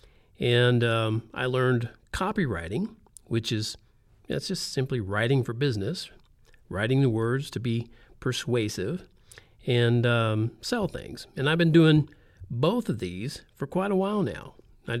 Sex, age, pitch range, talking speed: male, 50-69, 110-145 Hz, 150 wpm